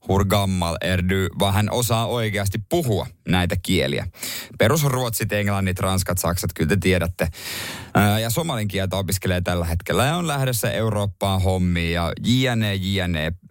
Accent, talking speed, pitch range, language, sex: native, 120 wpm, 95-130 Hz, Finnish, male